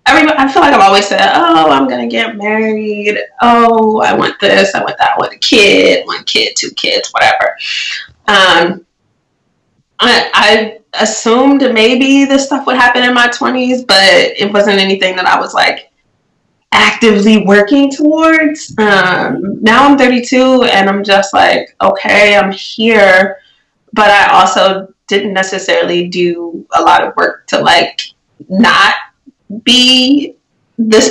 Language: English